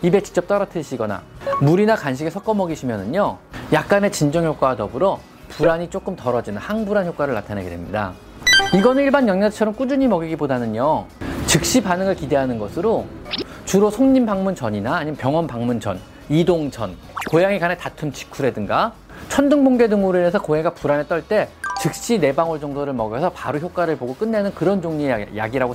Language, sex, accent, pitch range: Korean, male, native, 135-215 Hz